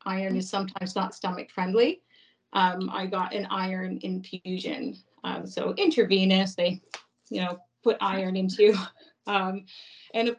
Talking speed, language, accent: 140 wpm, English, American